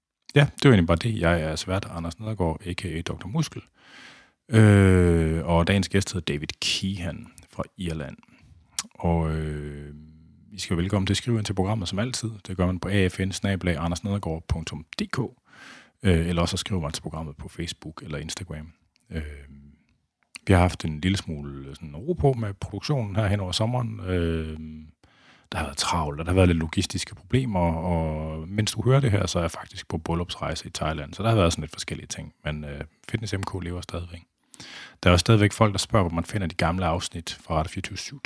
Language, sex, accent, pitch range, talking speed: Danish, male, native, 80-100 Hz, 195 wpm